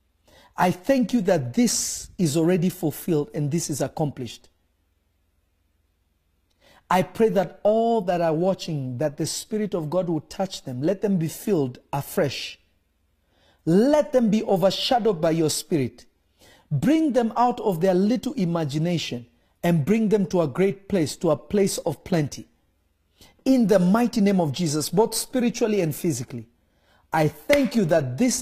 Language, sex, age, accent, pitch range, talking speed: English, male, 50-69, South African, 140-190 Hz, 155 wpm